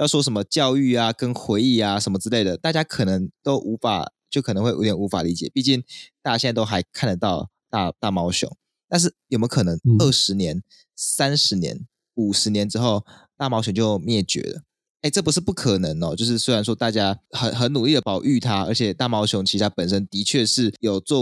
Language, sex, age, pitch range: Chinese, male, 20-39, 100-125 Hz